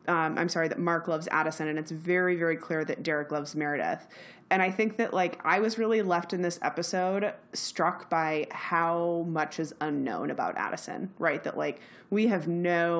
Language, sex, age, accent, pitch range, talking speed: English, female, 20-39, American, 160-190 Hz, 195 wpm